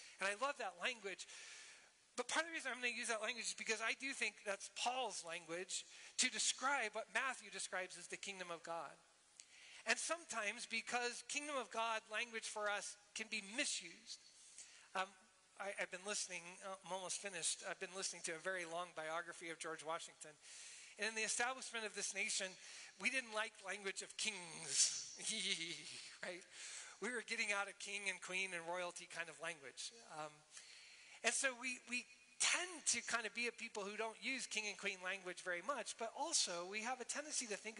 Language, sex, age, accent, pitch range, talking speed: English, male, 40-59, American, 185-235 Hz, 190 wpm